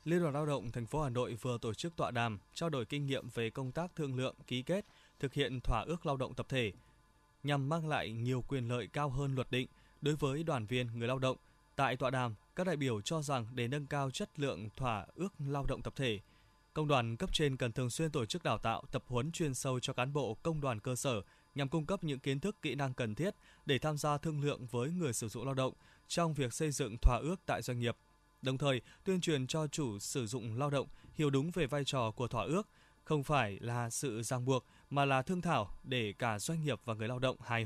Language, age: Vietnamese, 20-39